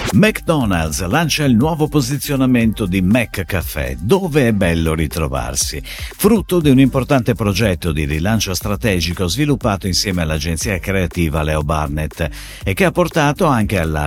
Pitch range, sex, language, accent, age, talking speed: 85-140 Hz, male, Italian, native, 50-69, 130 wpm